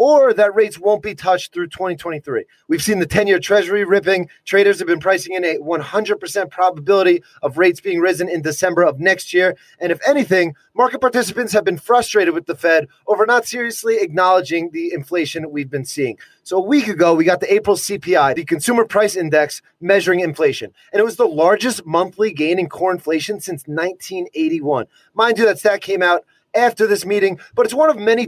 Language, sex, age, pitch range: English, male, 30-49, 170-215 Hz